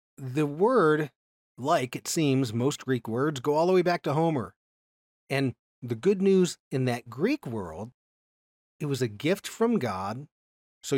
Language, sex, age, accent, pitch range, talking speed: English, male, 40-59, American, 125-165 Hz, 165 wpm